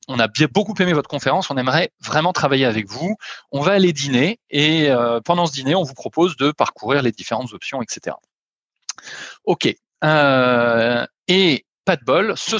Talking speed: 165 wpm